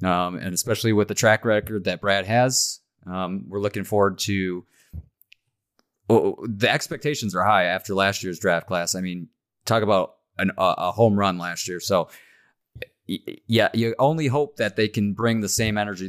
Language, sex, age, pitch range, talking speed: English, male, 30-49, 95-115 Hz, 180 wpm